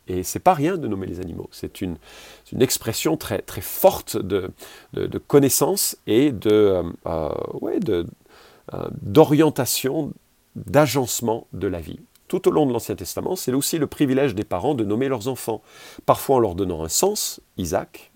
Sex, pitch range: male, 95-125 Hz